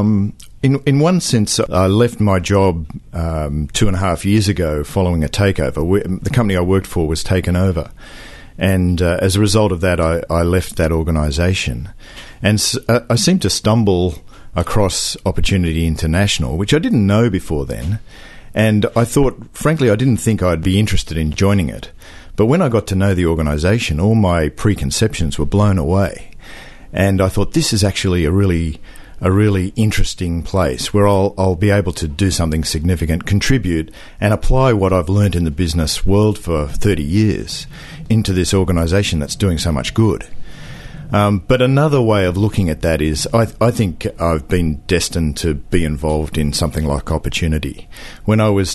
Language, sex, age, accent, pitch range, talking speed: English, male, 50-69, Australian, 80-105 Hz, 185 wpm